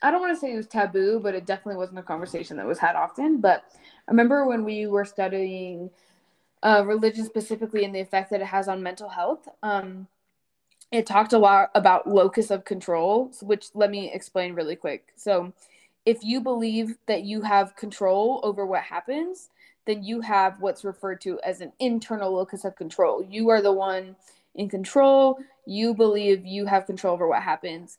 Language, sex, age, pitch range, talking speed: English, female, 10-29, 195-230 Hz, 190 wpm